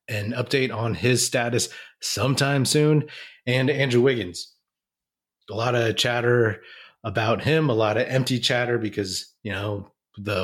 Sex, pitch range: male, 110-135 Hz